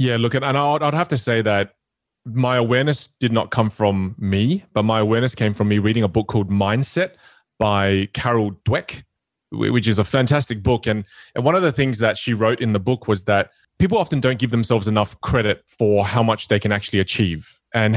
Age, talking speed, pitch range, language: 20-39, 205 wpm, 105-140 Hz, English